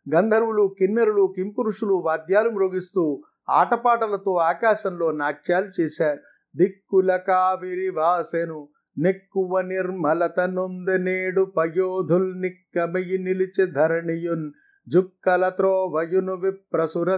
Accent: native